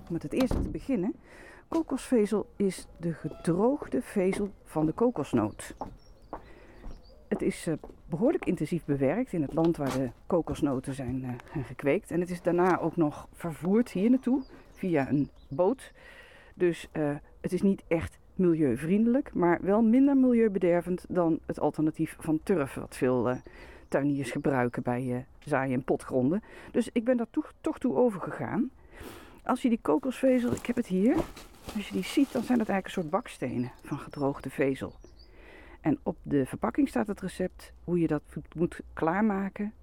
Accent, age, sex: Dutch, 40-59, female